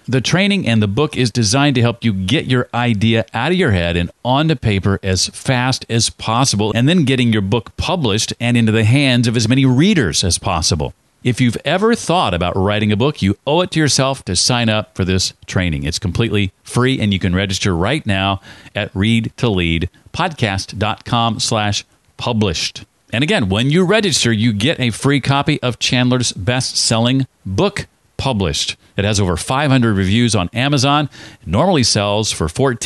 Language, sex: English, male